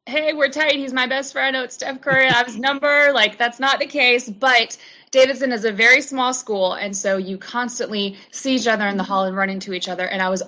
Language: English